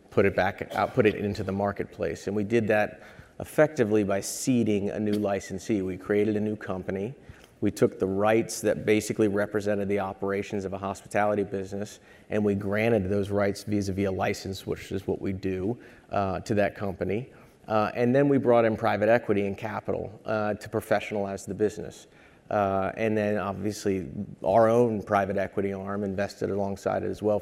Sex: male